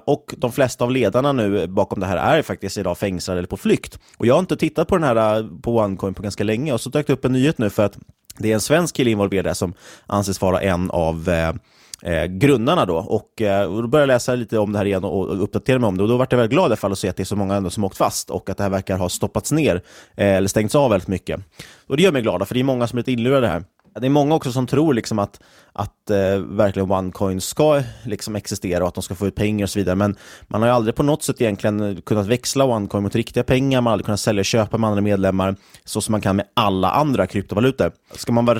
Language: Swedish